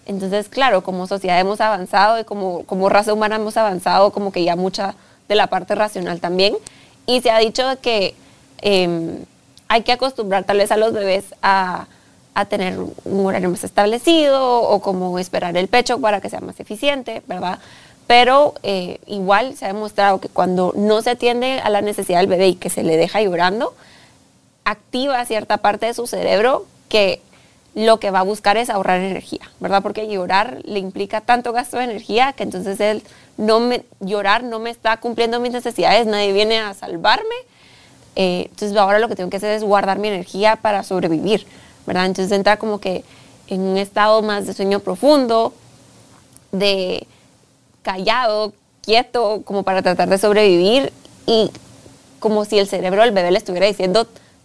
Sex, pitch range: female, 190-225 Hz